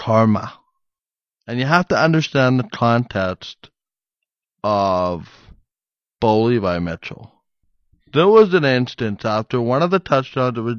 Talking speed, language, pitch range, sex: 130 wpm, English, 120-160 Hz, male